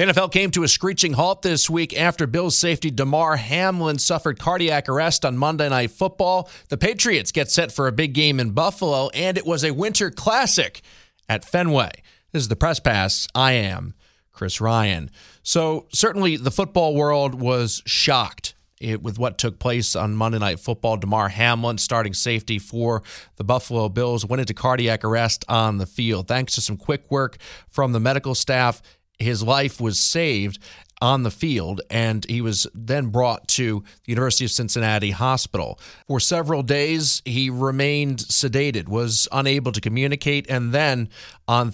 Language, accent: English, American